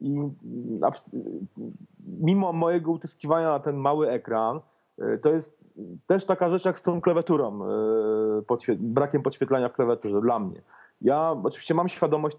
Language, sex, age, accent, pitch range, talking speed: Polish, male, 30-49, native, 130-170 Hz, 130 wpm